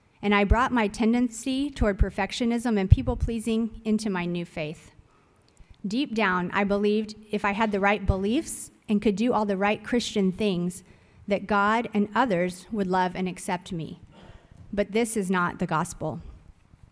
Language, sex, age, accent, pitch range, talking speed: English, female, 30-49, American, 185-220 Hz, 165 wpm